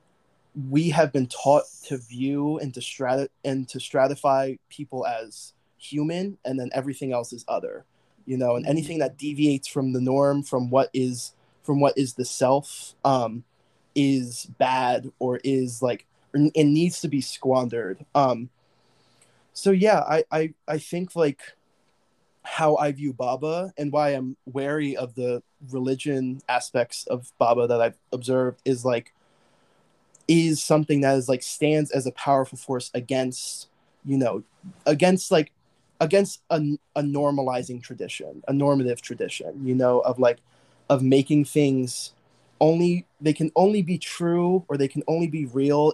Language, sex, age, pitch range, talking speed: English, male, 20-39, 130-150 Hz, 155 wpm